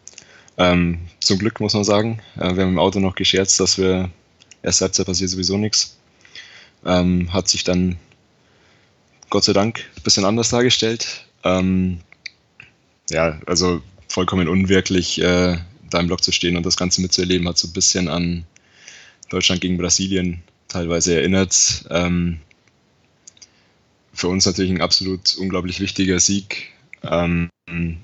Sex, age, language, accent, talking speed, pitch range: male, 20-39, German, German, 140 wpm, 85-95 Hz